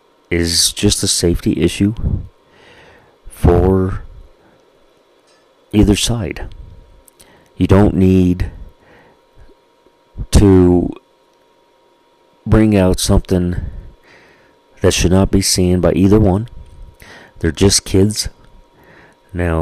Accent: American